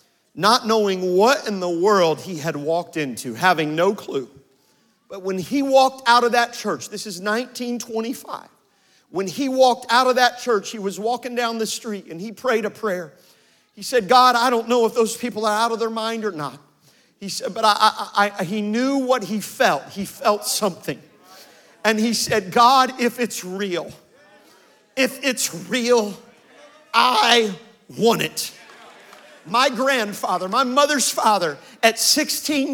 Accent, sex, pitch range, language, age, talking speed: American, male, 210-275 Hz, English, 40-59, 165 wpm